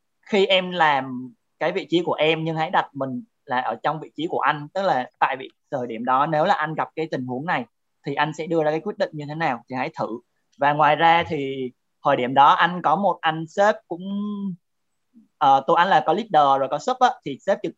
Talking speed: 250 wpm